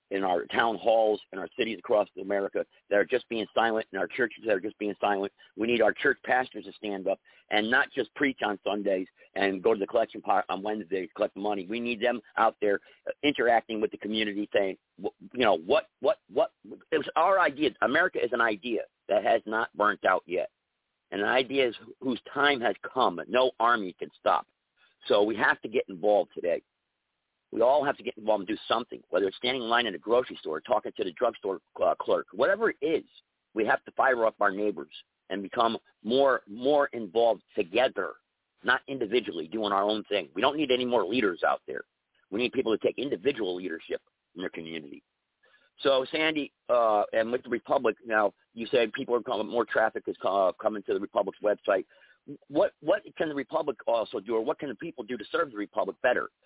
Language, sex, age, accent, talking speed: English, male, 50-69, American, 210 wpm